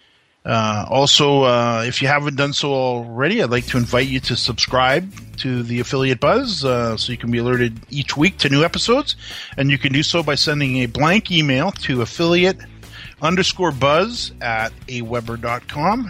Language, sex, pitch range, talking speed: English, male, 120-160 Hz, 175 wpm